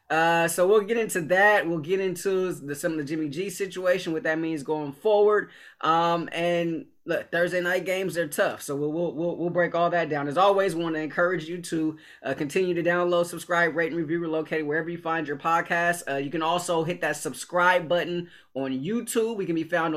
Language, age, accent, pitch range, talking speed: English, 20-39, American, 150-180 Hz, 220 wpm